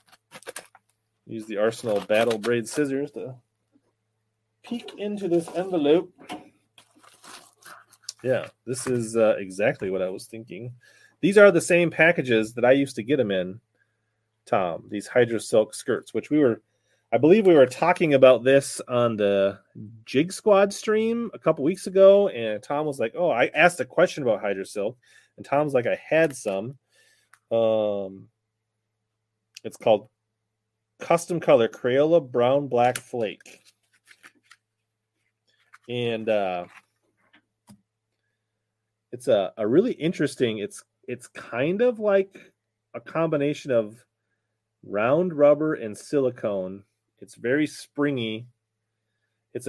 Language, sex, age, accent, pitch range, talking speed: English, male, 30-49, American, 110-150 Hz, 125 wpm